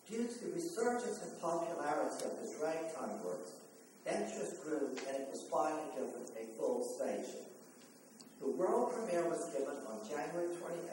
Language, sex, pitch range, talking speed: English, male, 140-180 Hz, 155 wpm